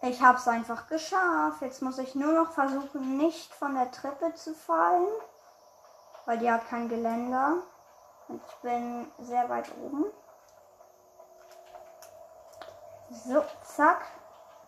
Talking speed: 120 wpm